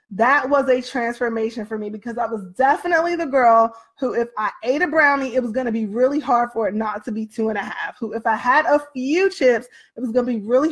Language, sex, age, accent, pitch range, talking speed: English, female, 20-39, American, 230-285 Hz, 265 wpm